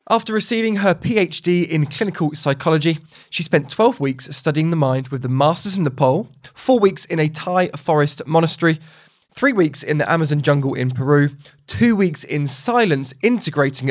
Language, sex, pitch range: English, male, 135-175 Hz